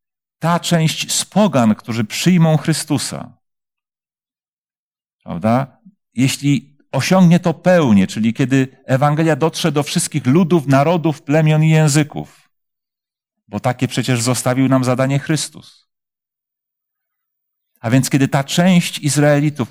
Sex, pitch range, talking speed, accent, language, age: male, 100-145 Hz, 110 wpm, native, Polish, 40-59